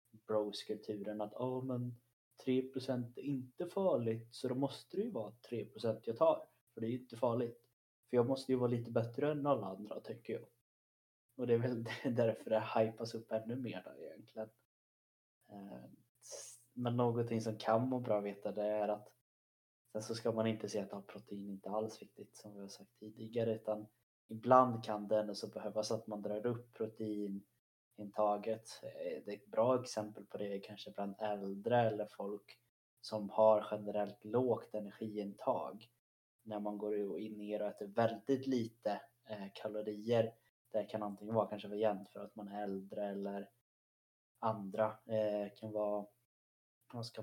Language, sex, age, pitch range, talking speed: Swedish, male, 20-39, 105-115 Hz, 170 wpm